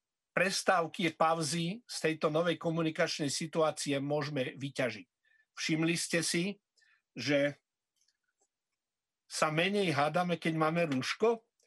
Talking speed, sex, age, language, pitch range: 100 wpm, male, 50-69, Slovak, 145-180 Hz